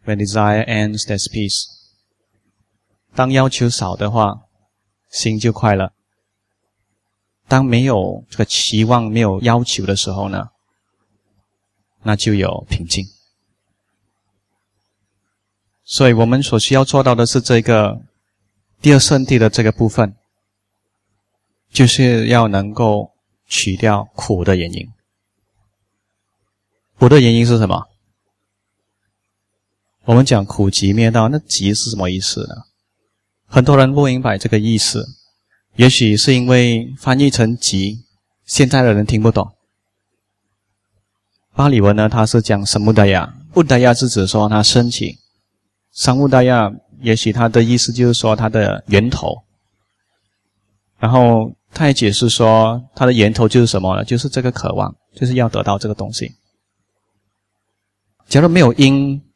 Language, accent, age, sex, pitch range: English, Chinese, 20-39, male, 100-120 Hz